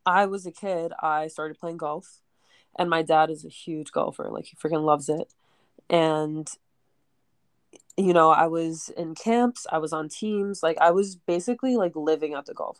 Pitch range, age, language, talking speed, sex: 155-180 Hz, 20-39, English, 190 wpm, female